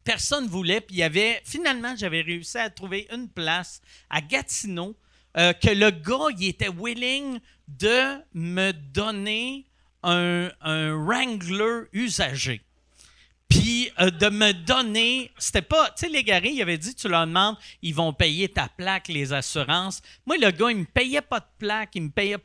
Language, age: French, 40-59